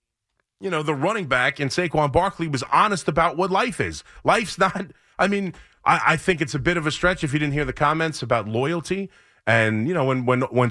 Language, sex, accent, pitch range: English, male, American, 125-180 Hz